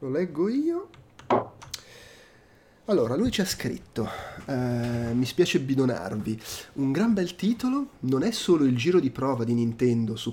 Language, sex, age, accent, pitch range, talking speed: Italian, male, 30-49, native, 120-195 Hz, 145 wpm